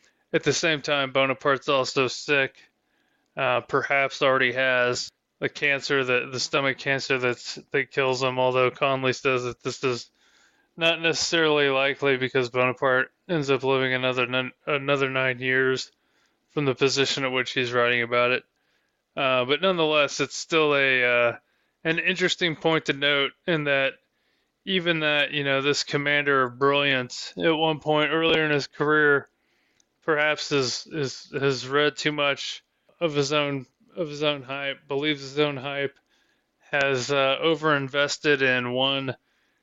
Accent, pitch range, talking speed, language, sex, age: American, 130-150 Hz, 150 wpm, English, male, 20-39